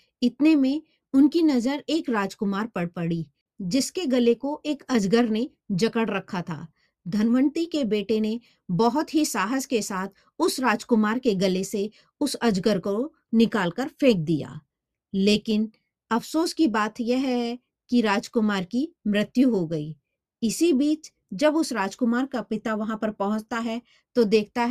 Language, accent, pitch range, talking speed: Hindi, native, 205-255 Hz, 155 wpm